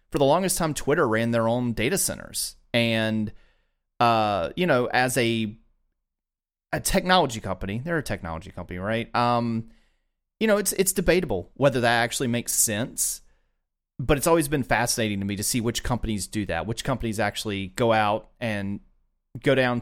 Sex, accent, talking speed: male, American, 170 wpm